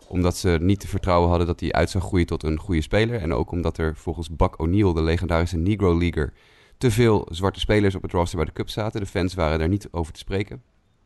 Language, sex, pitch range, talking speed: Dutch, male, 85-100 Hz, 245 wpm